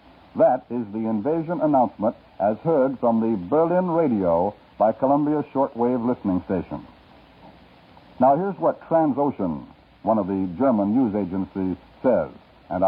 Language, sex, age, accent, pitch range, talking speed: English, male, 60-79, American, 115-160 Hz, 130 wpm